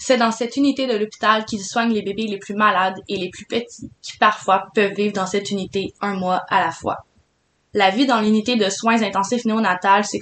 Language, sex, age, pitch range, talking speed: French, female, 20-39, 195-230 Hz, 225 wpm